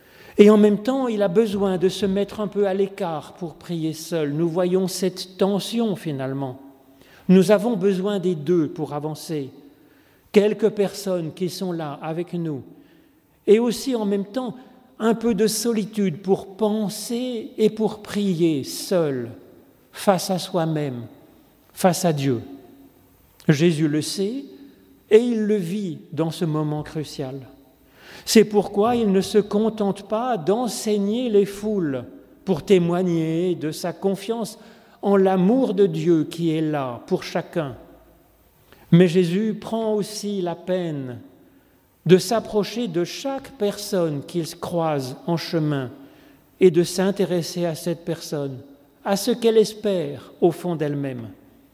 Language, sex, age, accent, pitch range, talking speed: French, male, 40-59, French, 160-205 Hz, 140 wpm